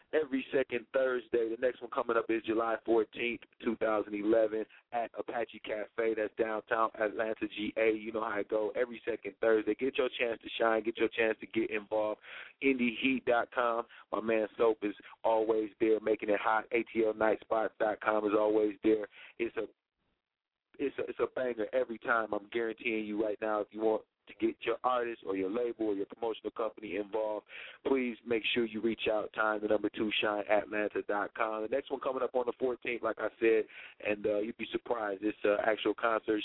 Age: 30-49